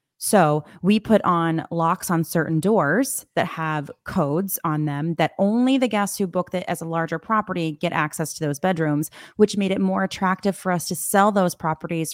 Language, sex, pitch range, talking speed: English, female, 155-180 Hz, 200 wpm